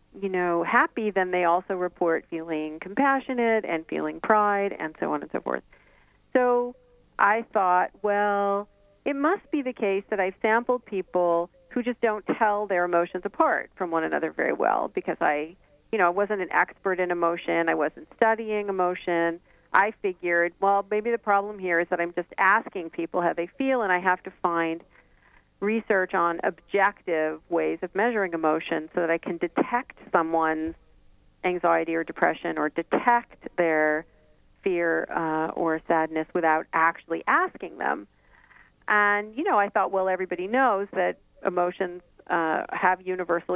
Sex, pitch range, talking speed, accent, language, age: female, 165-205 Hz, 165 wpm, American, English, 40-59